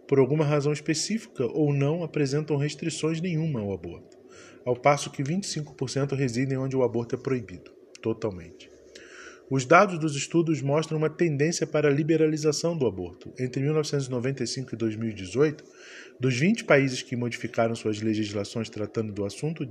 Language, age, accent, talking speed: Portuguese, 20-39, Brazilian, 145 wpm